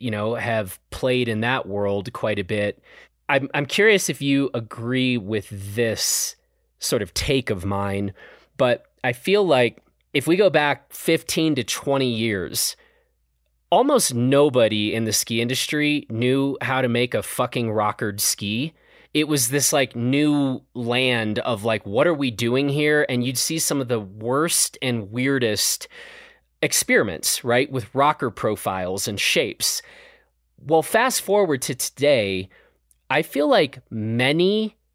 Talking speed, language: 150 wpm, English